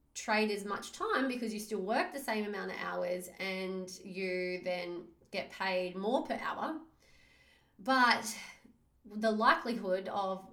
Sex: female